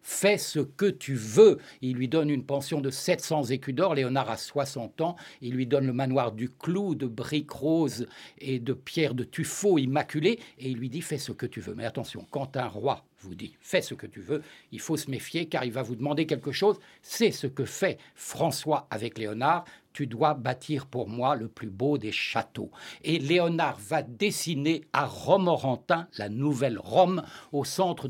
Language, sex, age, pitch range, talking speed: French, male, 60-79, 130-160 Hz, 220 wpm